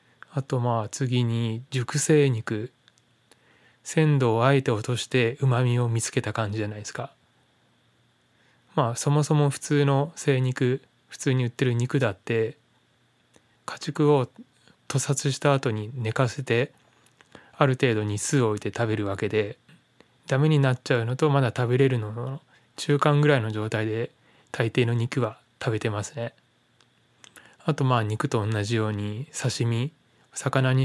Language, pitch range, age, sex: Japanese, 110-140 Hz, 20-39, male